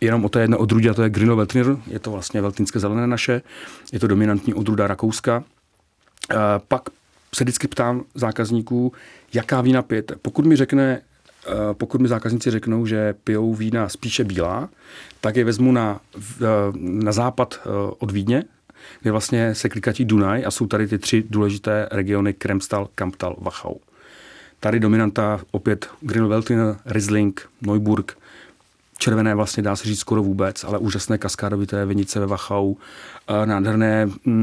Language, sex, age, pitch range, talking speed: Czech, male, 40-59, 100-115 Hz, 145 wpm